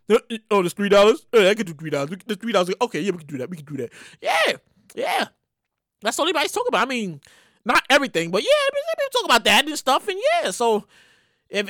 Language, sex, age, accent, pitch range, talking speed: English, male, 20-39, American, 220-345 Hz, 225 wpm